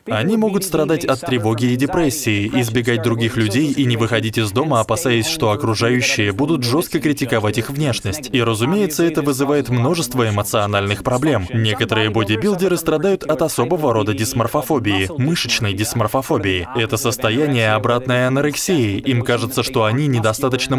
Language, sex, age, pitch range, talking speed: Russian, male, 20-39, 110-145 Hz, 140 wpm